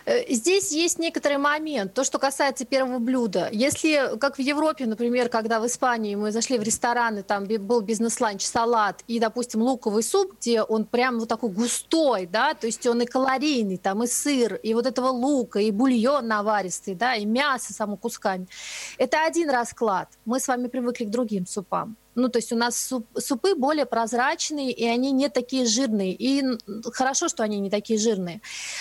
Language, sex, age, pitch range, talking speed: Russian, female, 30-49, 225-280 Hz, 180 wpm